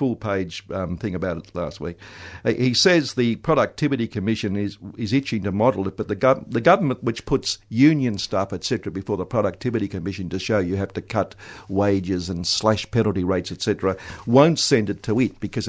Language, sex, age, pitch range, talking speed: English, male, 60-79, 100-125 Hz, 195 wpm